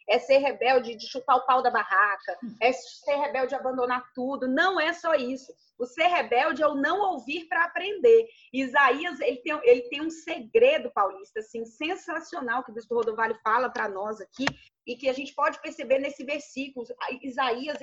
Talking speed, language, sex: 185 wpm, Portuguese, female